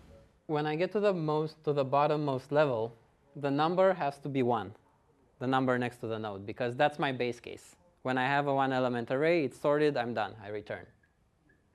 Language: English